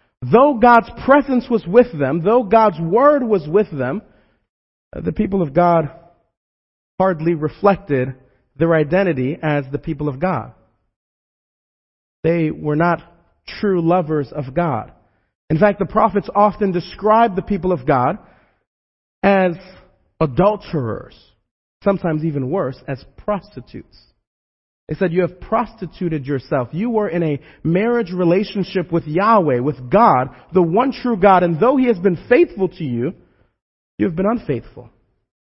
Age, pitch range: 40-59, 145-205 Hz